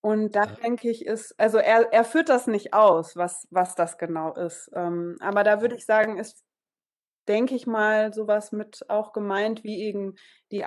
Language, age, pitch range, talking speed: German, 20-39, 190-225 Hz, 185 wpm